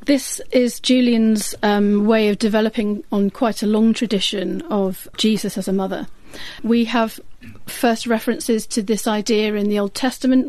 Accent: British